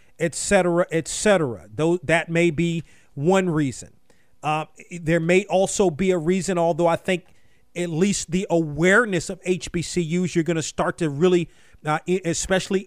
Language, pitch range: English, 155-185 Hz